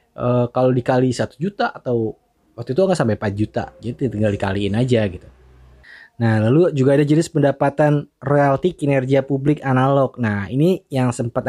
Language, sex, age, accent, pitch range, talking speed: Indonesian, male, 20-39, native, 120-155 Hz, 160 wpm